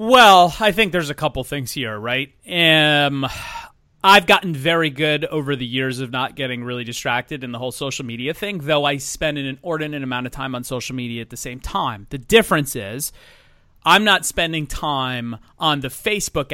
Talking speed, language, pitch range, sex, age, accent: 190 wpm, English, 135-165 Hz, male, 30-49, American